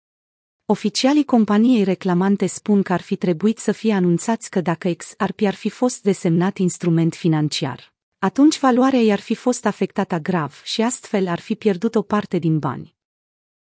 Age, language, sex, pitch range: 30-49, Romanian, female, 175-220 Hz